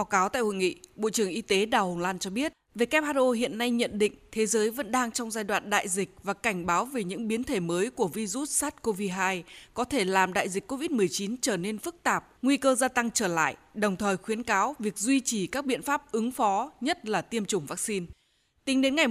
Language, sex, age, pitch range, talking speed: Vietnamese, female, 20-39, 200-260 Hz, 235 wpm